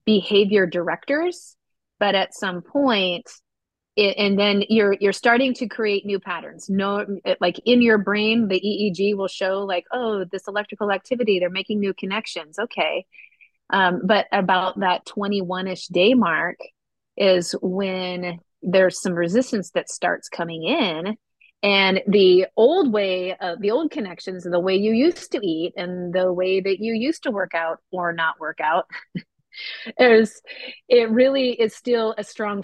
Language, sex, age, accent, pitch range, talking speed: English, female, 30-49, American, 185-225 Hz, 160 wpm